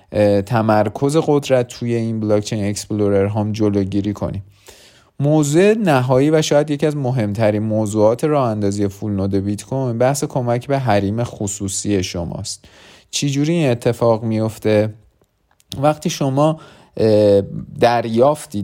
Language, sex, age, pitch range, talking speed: Persian, male, 30-49, 105-135 Hz, 115 wpm